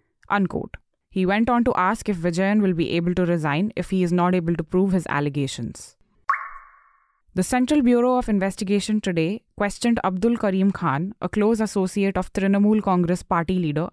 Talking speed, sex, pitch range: 170 wpm, female, 170-205 Hz